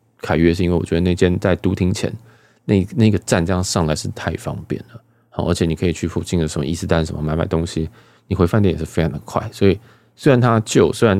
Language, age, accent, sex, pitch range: Chinese, 20-39, native, male, 85-115 Hz